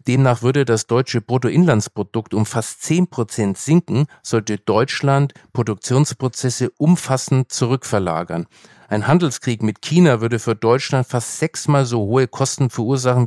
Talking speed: 125 wpm